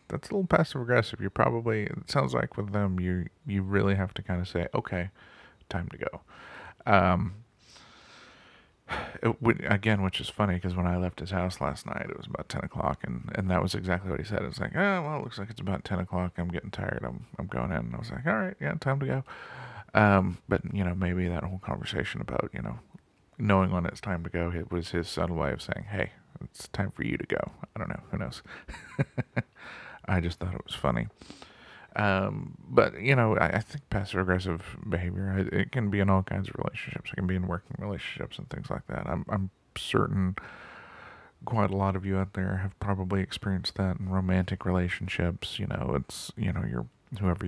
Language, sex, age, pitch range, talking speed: English, male, 40-59, 90-100 Hz, 215 wpm